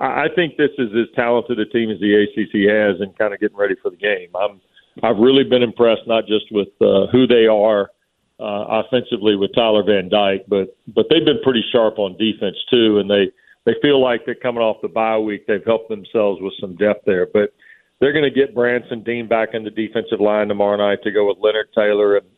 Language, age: English, 50-69